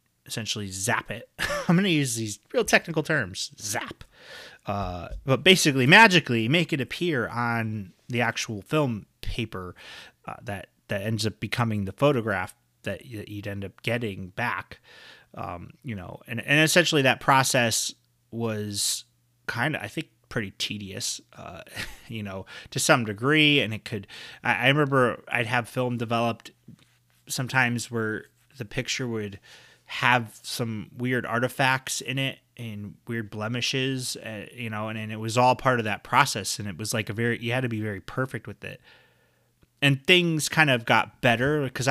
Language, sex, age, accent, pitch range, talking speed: English, male, 30-49, American, 105-130 Hz, 165 wpm